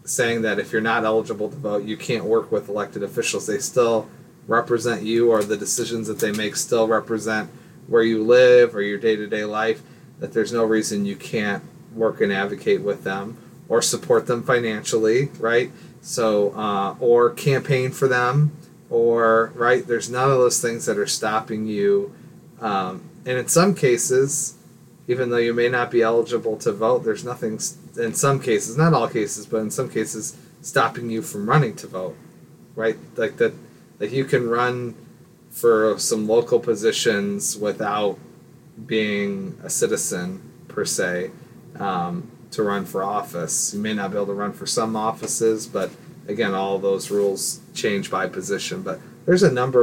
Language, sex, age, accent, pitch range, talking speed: English, male, 30-49, American, 110-135 Hz, 170 wpm